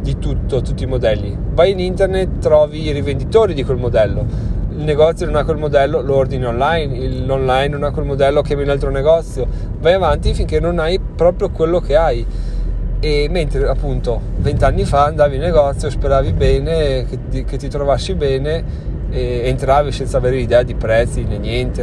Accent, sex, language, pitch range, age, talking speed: native, male, Italian, 115-145 Hz, 30-49, 180 wpm